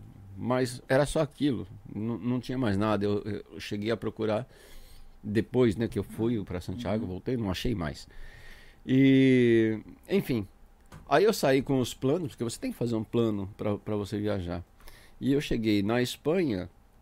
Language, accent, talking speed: Portuguese, Brazilian, 170 wpm